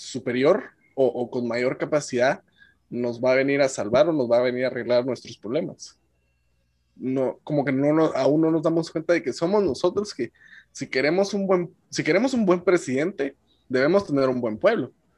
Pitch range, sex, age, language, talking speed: 125-165 Hz, male, 20-39, Spanish, 200 wpm